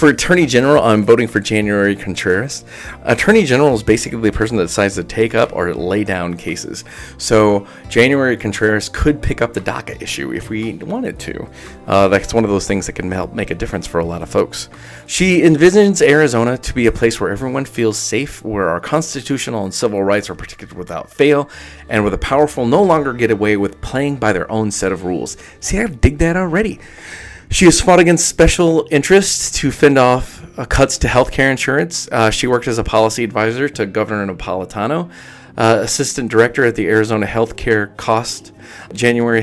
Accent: American